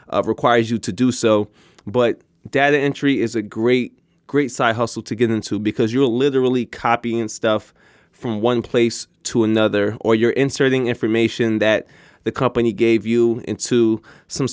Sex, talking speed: male, 160 wpm